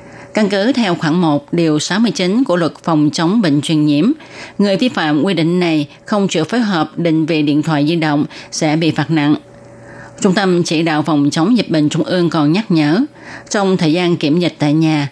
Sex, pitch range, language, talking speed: female, 155-200 Hz, Vietnamese, 215 wpm